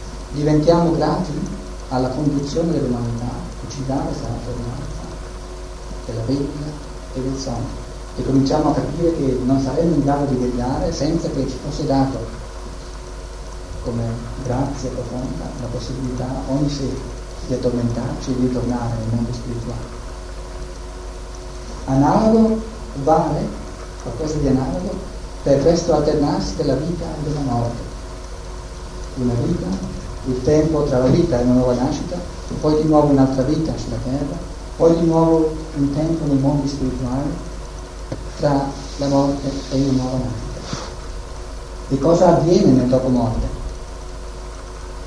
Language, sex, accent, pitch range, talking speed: Italian, male, native, 95-140 Hz, 130 wpm